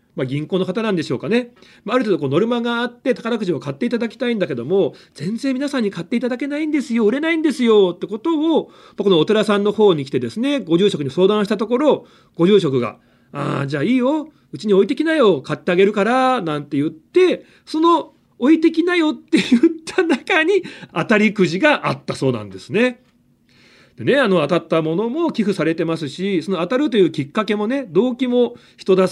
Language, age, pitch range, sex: Japanese, 40-59, 150-250 Hz, male